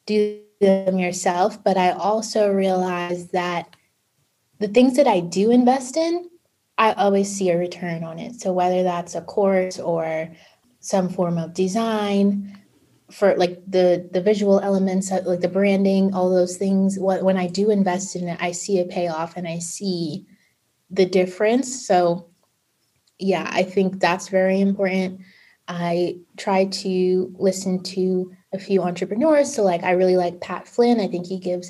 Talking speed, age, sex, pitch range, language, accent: 160 wpm, 20-39, female, 180-205 Hz, English, American